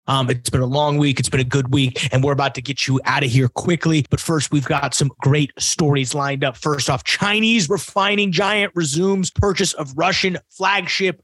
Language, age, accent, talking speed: English, 30-49, American, 215 wpm